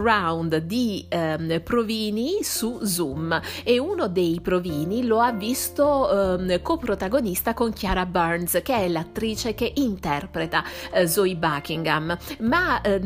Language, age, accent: Italian, 30-49, native